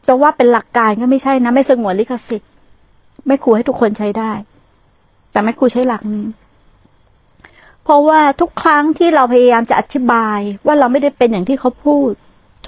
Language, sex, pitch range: Thai, female, 215-270 Hz